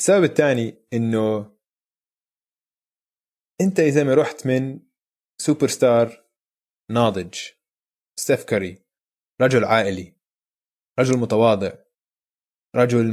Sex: male